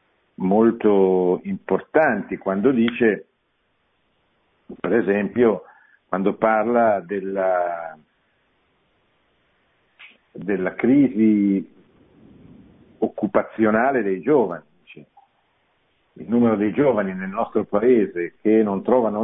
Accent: native